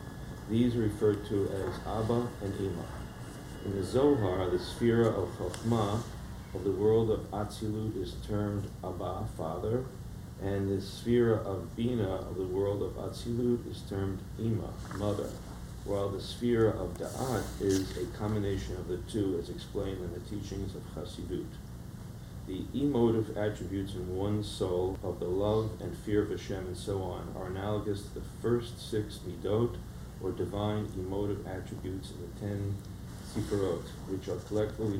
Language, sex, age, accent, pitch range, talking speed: English, male, 40-59, American, 95-110 Hz, 155 wpm